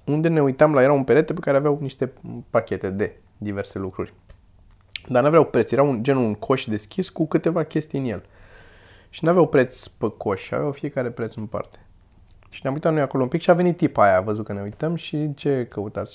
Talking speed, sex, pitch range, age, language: 225 wpm, male, 105-170 Hz, 20-39, Romanian